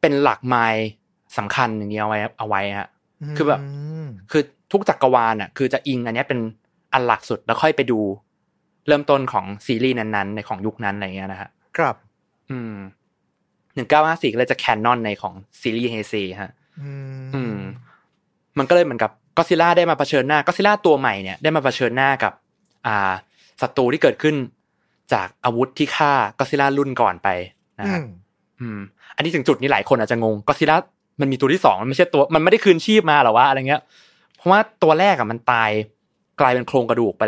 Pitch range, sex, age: 110-150 Hz, male, 20-39